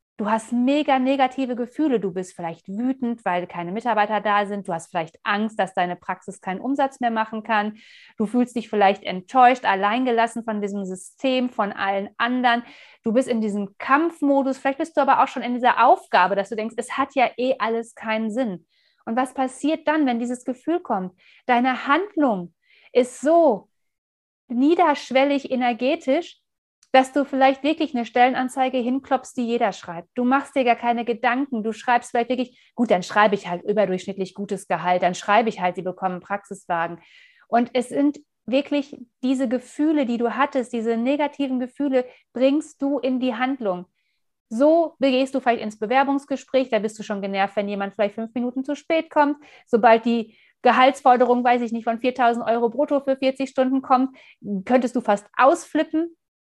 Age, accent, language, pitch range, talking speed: 30-49, German, German, 210-270 Hz, 175 wpm